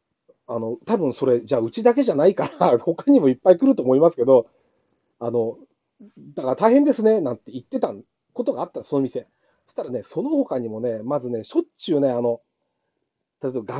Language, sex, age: Japanese, male, 40-59